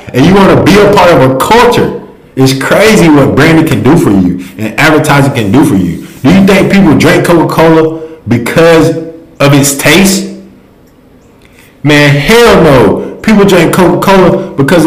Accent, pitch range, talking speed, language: American, 120-165 Hz, 175 wpm, English